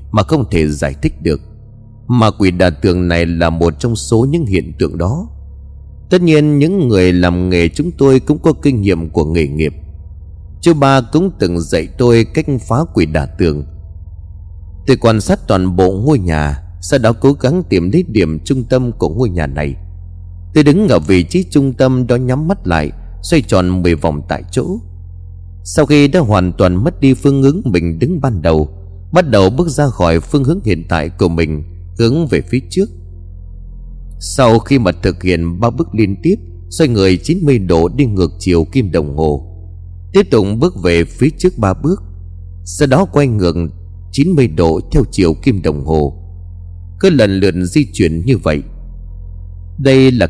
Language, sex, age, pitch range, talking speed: Vietnamese, male, 30-49, 85-130 Hz, 185 wpm